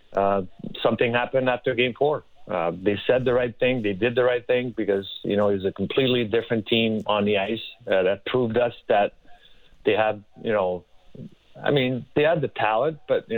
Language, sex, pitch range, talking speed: English, male, 100-120 Hz, 205 wpm